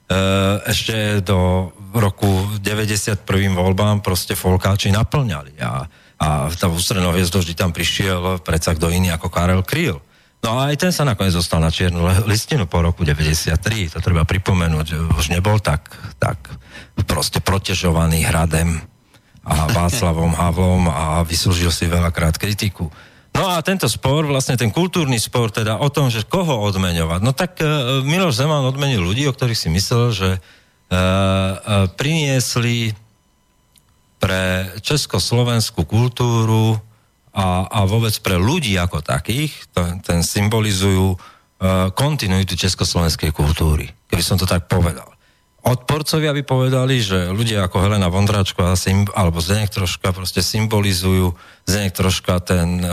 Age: 40-59